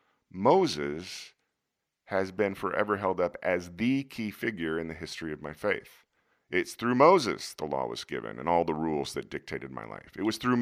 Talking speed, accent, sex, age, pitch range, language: 190 wpm, American, male, 40-59, 80-110 Hz, English